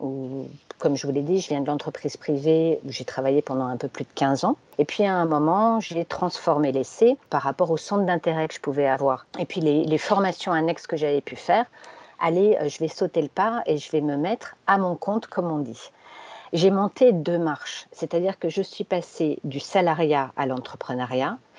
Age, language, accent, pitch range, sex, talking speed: 50-69, French, French, 150-200 Hz, female, 215 wpm